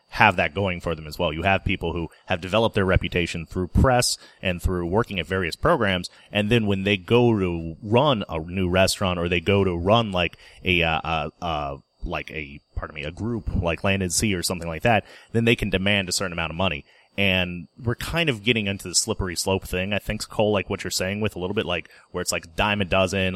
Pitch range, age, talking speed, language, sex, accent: 85-105 Hz, 30-49, 240 wpm, English, male, American